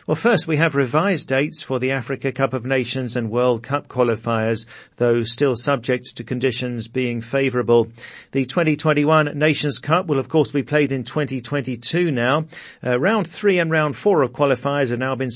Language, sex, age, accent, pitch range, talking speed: English, male, 40-59, British, 125-150 Hz, 180 wpm